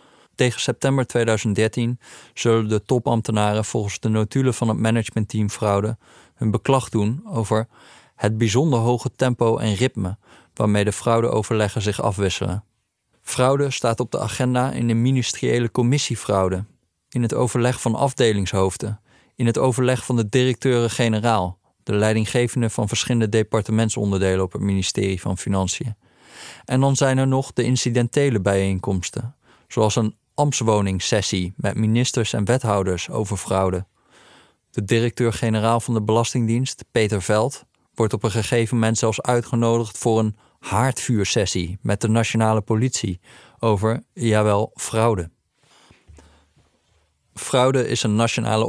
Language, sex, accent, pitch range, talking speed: Dutch, male, Dutch, 105-120 Hz, 130 wpm